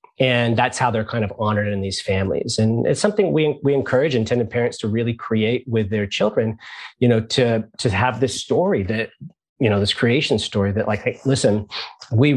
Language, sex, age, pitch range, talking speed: English, male, 30-49, 110-135 Hz, 205 wpm